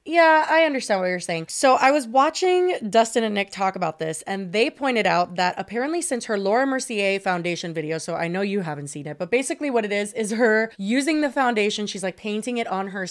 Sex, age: female, 20-39